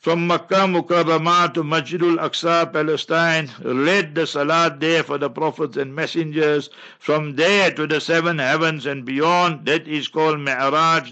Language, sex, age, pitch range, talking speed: English, male, 60-79, 150-170 Hz, 150 wpm